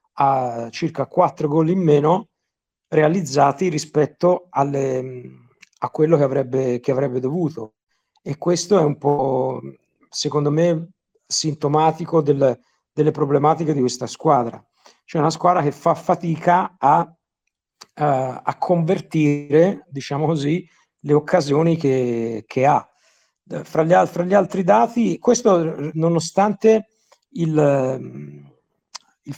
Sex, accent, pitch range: male, native, 145-175 Hz